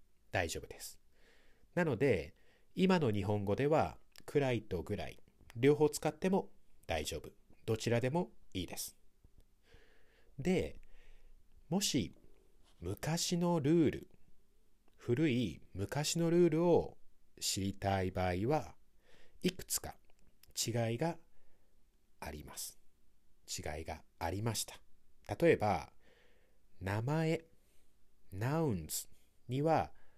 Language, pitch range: English, 95-135 Hz